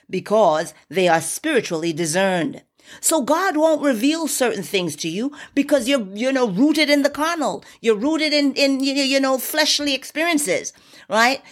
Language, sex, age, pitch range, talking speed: English, female, 40-59, 195-290 Hz, 155 wpm